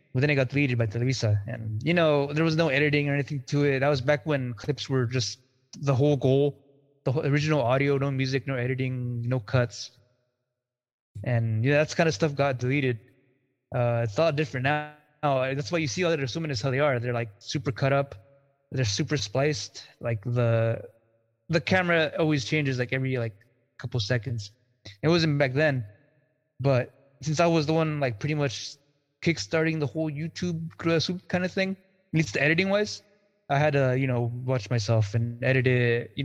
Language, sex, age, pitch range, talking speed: English, male, 20-39, 125-160 Hz, 195 wpm